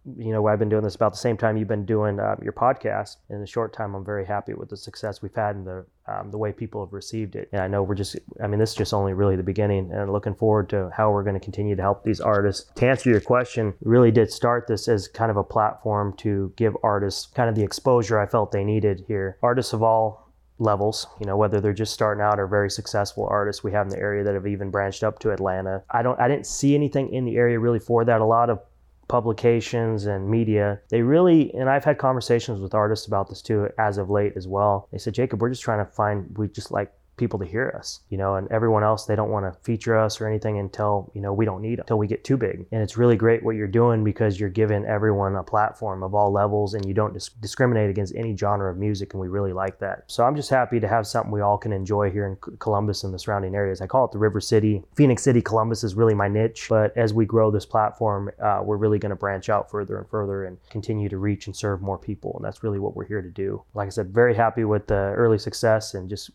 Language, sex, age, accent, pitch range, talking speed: English, male, 30-49, American, 100-115 Hz, 265 wpm